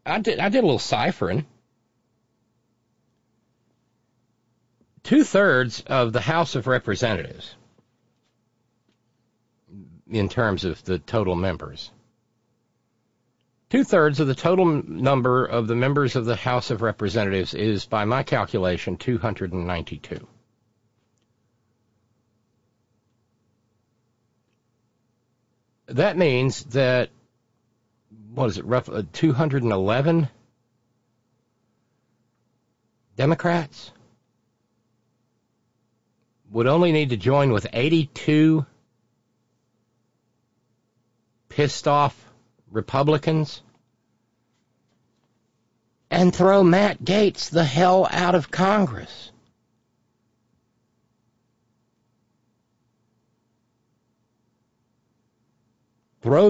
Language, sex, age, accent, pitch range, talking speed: English, male, 50-69, American, 115-125 Hz, 70 wpm